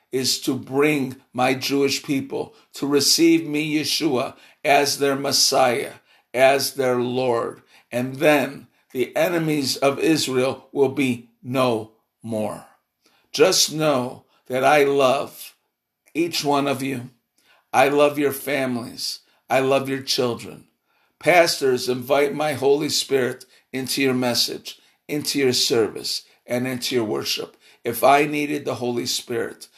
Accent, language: American, English